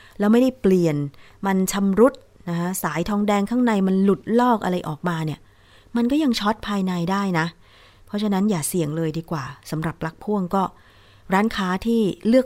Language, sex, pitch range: Thai, female, 165-215 Hz